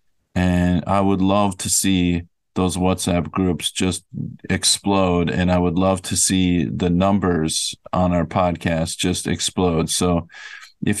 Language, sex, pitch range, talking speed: English, male, 85-95 Hz, 140 wpm